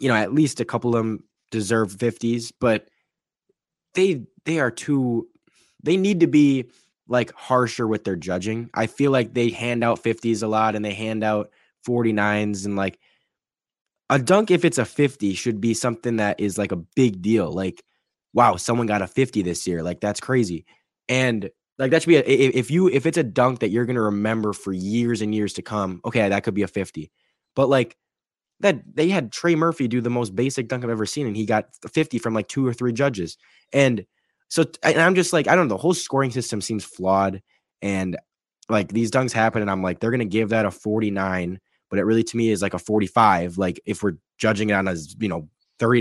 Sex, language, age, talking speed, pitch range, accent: male, English, 10-29, 220 wpm, 100-125 Hz, American